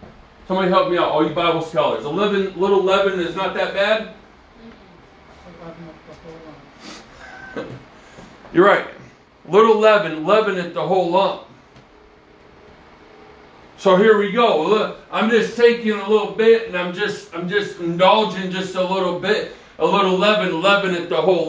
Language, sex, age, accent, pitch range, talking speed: English, male, 40-59, American, 175-215 Hz, 150 wpm